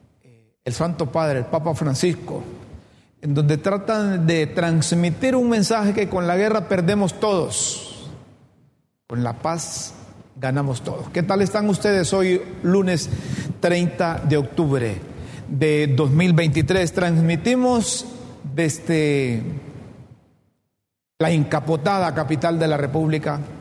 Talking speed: 110 wpm